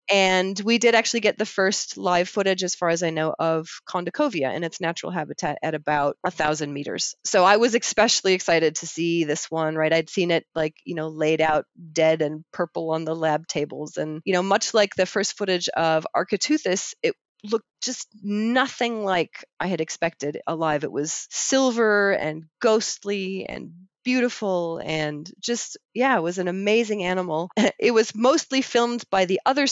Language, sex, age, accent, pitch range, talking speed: English, female, 30-49, American, 165-215 Hz, 185 wpm